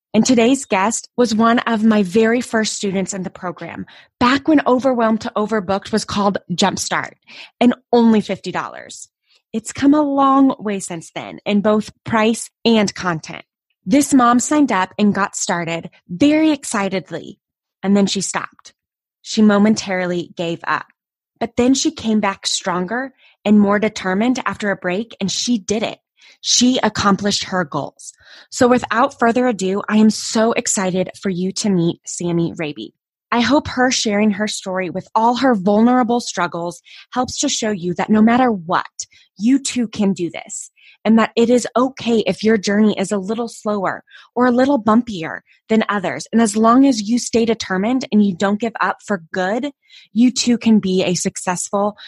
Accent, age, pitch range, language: American, 20-39, 190-240 Hz, English